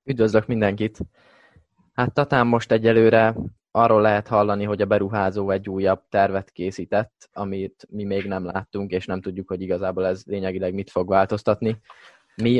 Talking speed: 150 wpm